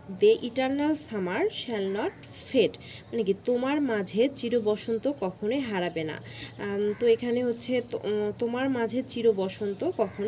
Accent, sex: native, female